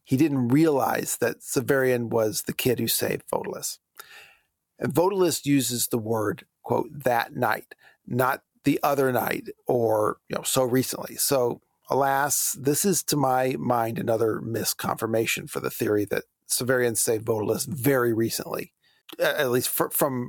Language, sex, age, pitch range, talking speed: English, male, 40-59, 120-150 Hz, 150 wpm